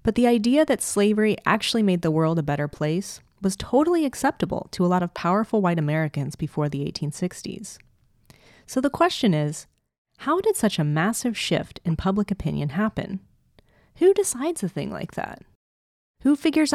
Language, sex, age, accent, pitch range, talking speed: English, female, 30-49, American, 155-230 Hz, 170 wpm